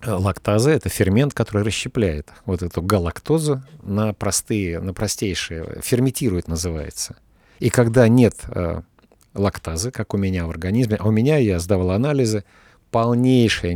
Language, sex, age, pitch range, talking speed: Russian, male, 50-69, 90-125 Hz, 135 wpm